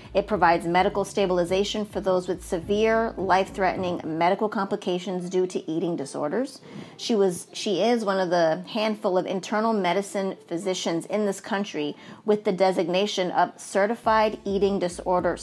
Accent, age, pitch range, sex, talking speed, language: American, 30-49, 180-220 Hz, female, 145 wpm, English